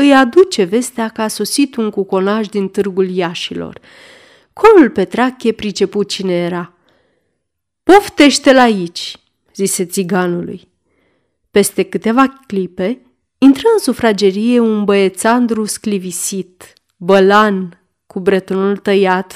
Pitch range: 190-250 Hz